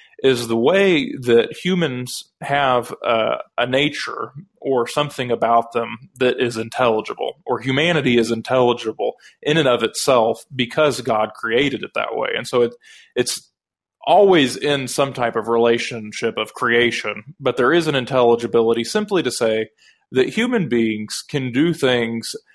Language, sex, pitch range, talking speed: English, male, 115-145 Hz, 145 wpm